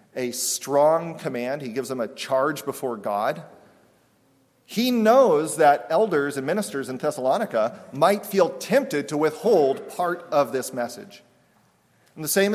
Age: 40-59